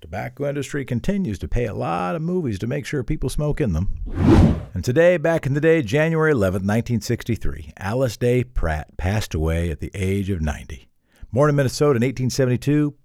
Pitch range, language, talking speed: 100-145 Hz, English, 185 wpm